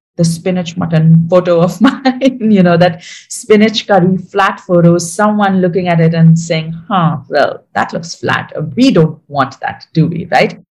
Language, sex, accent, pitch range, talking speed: English, female, Indian, 165-225 Hz, 175 wpm